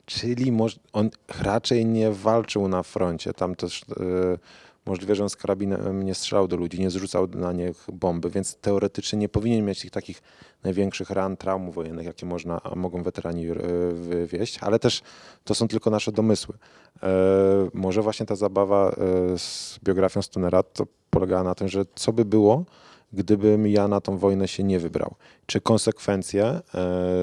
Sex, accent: male, native